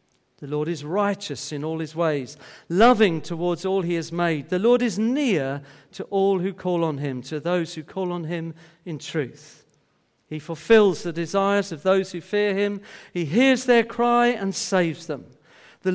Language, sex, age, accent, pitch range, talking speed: English, male, 50-69, British, 145-185 Hz, 185 wpm